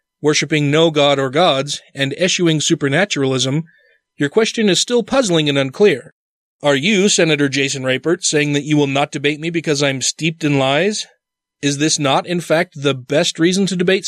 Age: 30-49